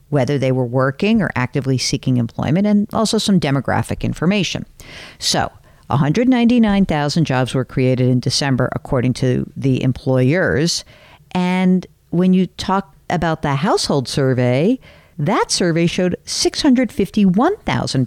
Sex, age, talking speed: female, 50-69, 120 wpm